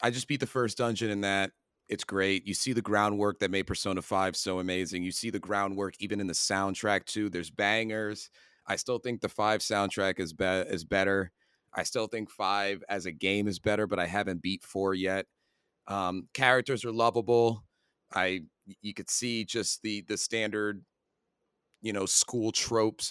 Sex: male